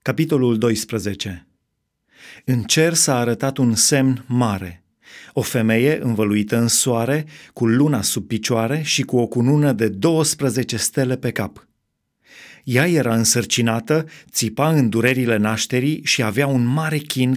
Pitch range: 115-145 Hz